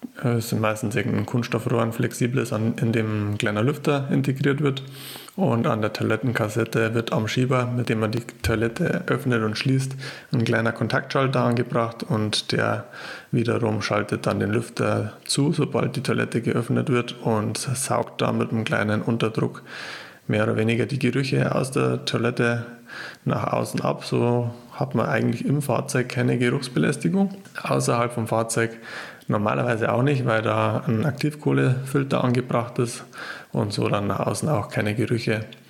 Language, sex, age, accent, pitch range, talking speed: German, male, 20-39, German, 105-125 Hz, 155 wpm